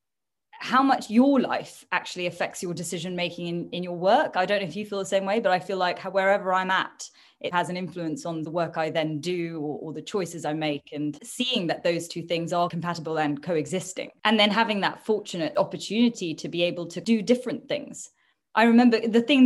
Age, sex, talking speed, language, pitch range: 20-39, female, 220 wpm, English, 170-210 Hz